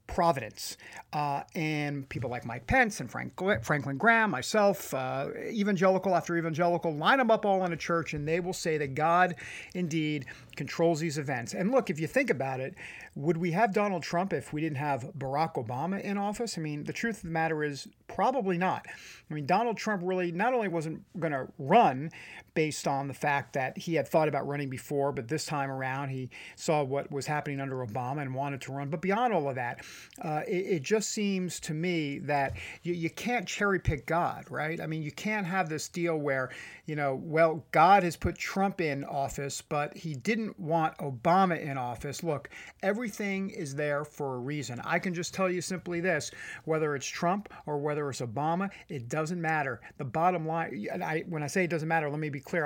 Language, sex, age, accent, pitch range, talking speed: English, male, 50-69, American, 140-185 Hz, 205 wpm